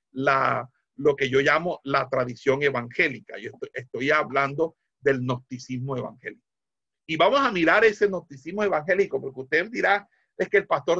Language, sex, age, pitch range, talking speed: Spanish, male, 50-69, 140-195 Hz, 160 wpm